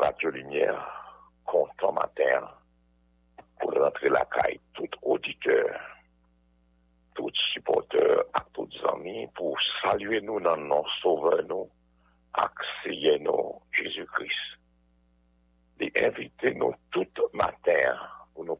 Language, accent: English, French